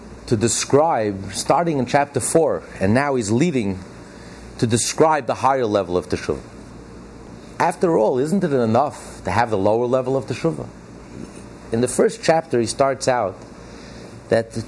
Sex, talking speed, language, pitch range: male, 150 wpm, English, 100-140 Hz